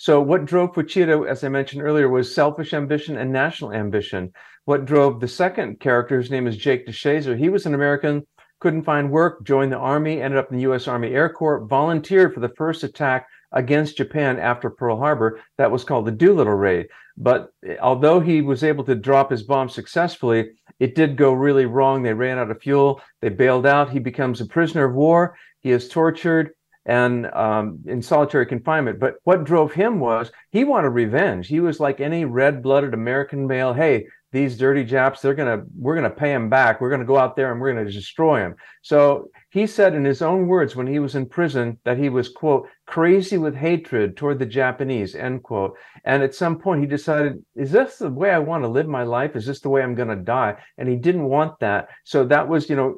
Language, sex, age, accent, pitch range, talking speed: English, male, 50-69, American, 125-155 Hz, 220 wpm